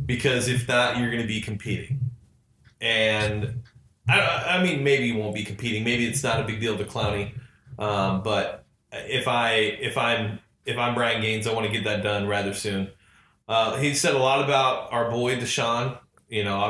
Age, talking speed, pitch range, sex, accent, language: 20-39, 190 wpm, 105-125 Hz, male, American, English